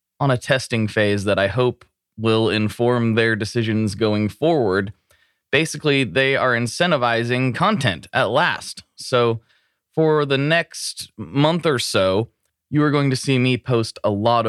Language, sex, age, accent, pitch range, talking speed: English, male, 20-39, American, 105-140 Hz, 150 wpm